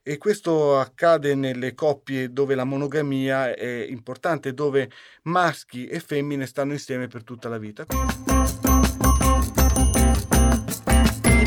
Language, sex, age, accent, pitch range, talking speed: Italian, male, 40-59, native, 130-175 Hz, 110 wpm